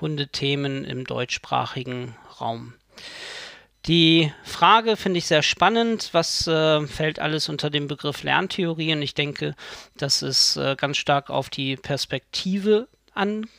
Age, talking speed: 40-59, 135 wpm